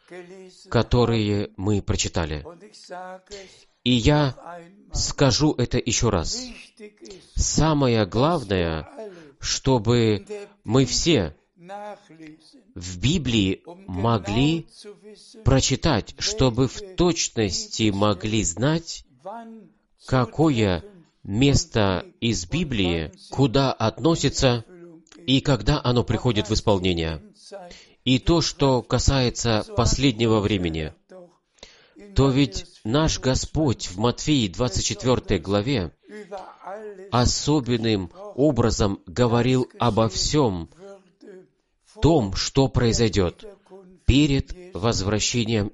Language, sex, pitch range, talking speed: Russian, male, 110-165 Hz, 75 wpm